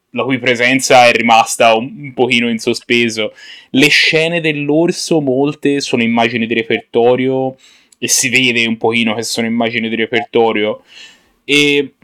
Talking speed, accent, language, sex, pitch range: 145 wpm, native, Italian, male, 110-125 Hz